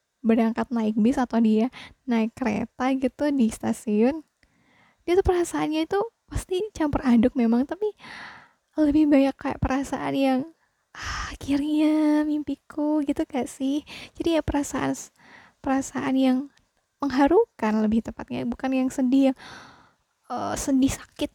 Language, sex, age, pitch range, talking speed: Indonesian, female, 10-29, 235-290 Hz, 125 wpm